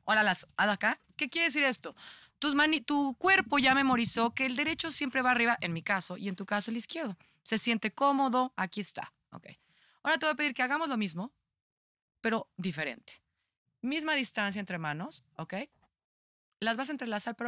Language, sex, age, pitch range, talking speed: Spanish, female, 30-49, 200-275 Hz, 190 wpm